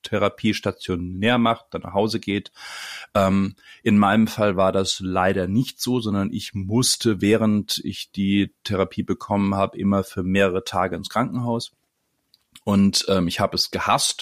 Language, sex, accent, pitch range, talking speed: German, male, German, 95-125 Hz, 155 wpm